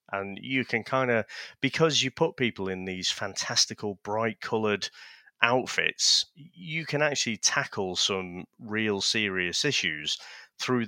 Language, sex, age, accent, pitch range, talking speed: English, male, 30-49, British, 95-115 Hz, 125 wpm